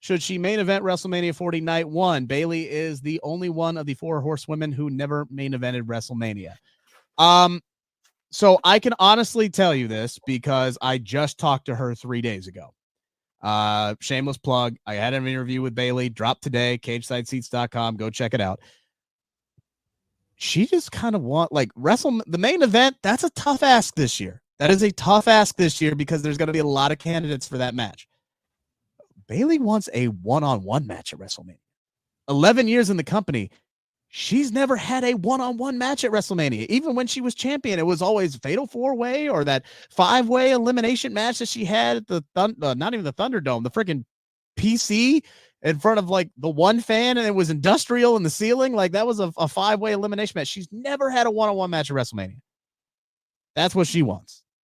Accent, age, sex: American, 30-49, male